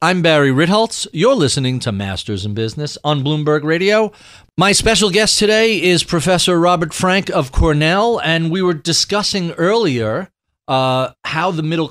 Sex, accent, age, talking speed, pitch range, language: male, American, 40-59, 155 wpm, 125-175 Hz, English